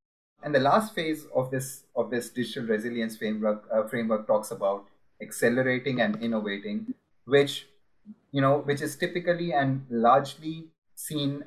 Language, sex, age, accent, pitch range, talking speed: English, male, 30-49, Indian, 110-140 Hz, 140 wpm